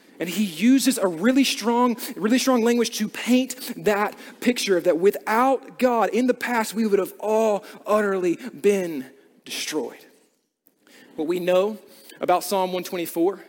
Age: 30-49